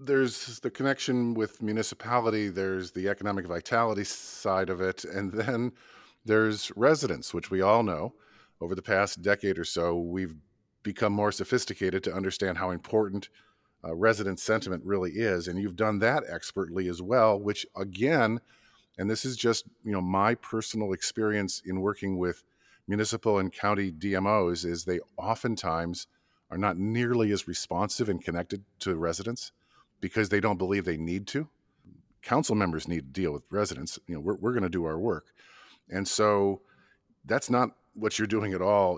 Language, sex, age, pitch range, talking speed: English, male, 50-69, 95-110 Hz, 165 wpm